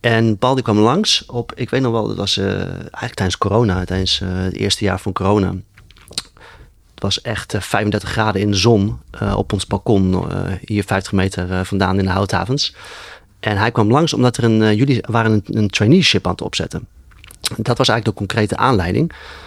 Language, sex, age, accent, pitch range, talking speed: Dutch, male, 30-49, Dutch, 95-115 Hz, 205 wpm